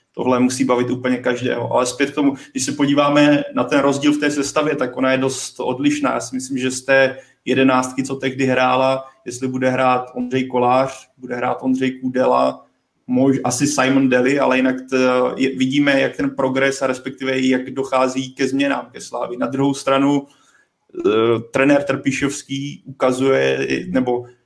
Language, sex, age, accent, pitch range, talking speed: Czech, male, 30-49, native, 130-135 Hz, 165 wpm